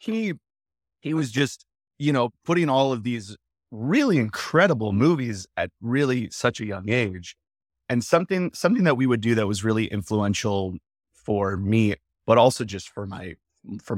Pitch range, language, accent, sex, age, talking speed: 100-125 Hz, English, American, male, 30-49, 165 wpm